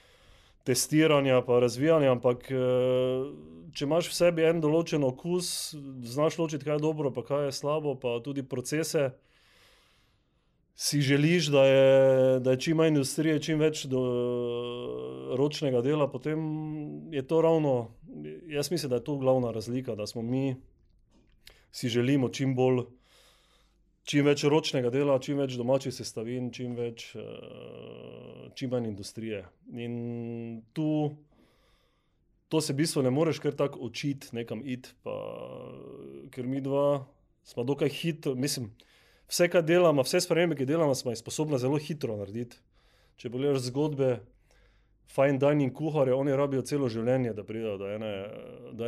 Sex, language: male, English